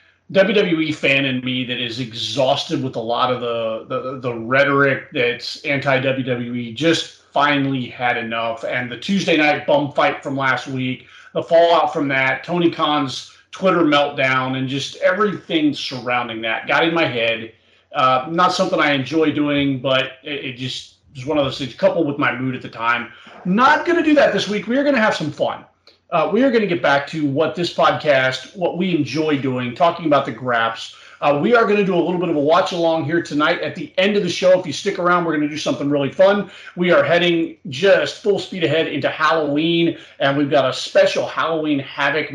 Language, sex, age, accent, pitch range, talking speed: English, male, 30-49, American, 135-170 Hz, 210 wpm